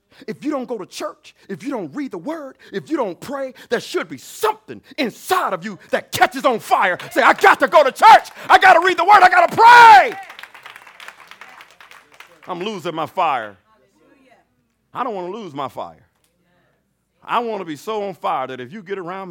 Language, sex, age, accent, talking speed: English, male, 50-69, American, 210 wpm